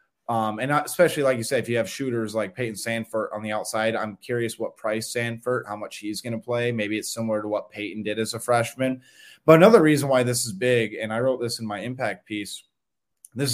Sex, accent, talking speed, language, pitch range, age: male, American, 235 wpm, English, 110-125 Hz, 20-39